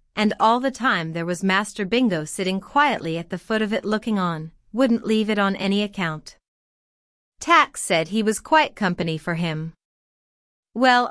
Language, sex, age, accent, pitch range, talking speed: English, female, 30-49, American, 180-245 Hz, 175 wpm